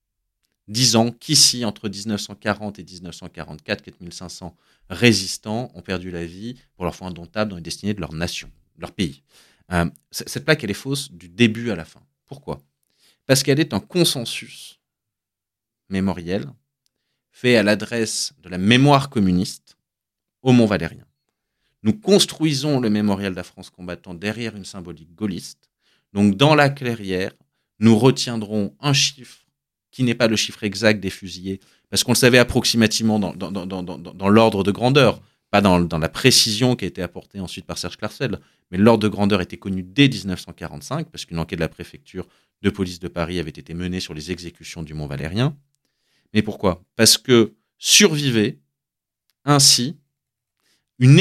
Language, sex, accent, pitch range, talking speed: French, male, French, 90-125 Hz, 160 wpm